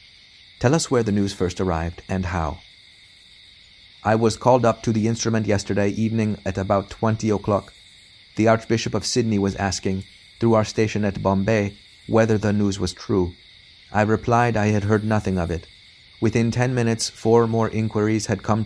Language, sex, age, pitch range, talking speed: English, male, 30-49, 95-110 Hz, 175 wpm